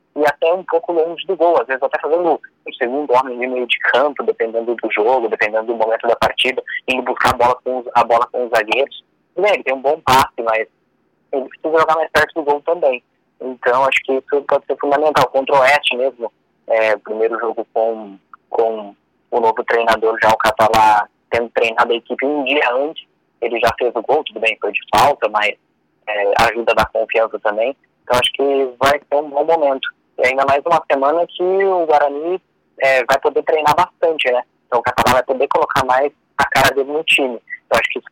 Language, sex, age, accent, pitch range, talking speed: Portuguese, male, 20-39, Brazilian, 115-145 Hz, 220 wpm